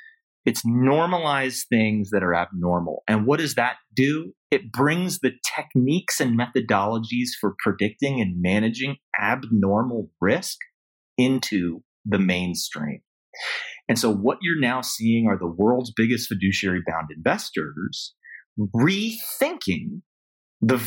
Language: English